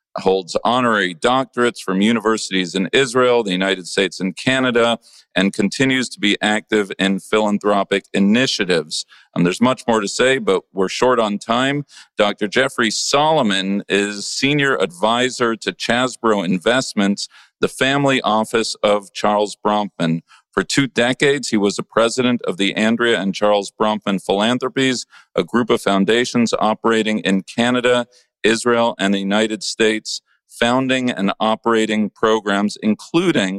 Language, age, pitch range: English, 40-59, 100-120 Hz